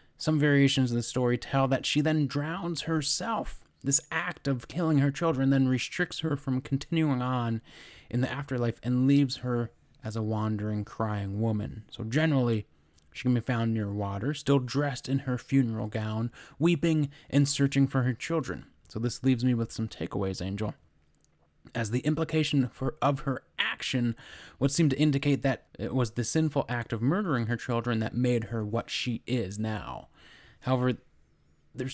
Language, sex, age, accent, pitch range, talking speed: English, male, 20-39, American, 115-140 Hz, 175 wpm